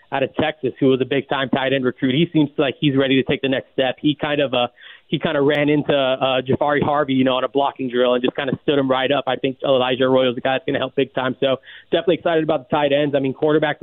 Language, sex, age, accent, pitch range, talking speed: English, male, 20-39, American, 135-155 Hz, 300 wpm